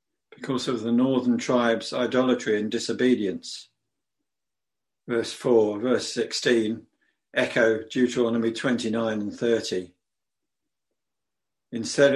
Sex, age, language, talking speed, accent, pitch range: male, 60-79, English, 90 wpm, British, 110-130 Hz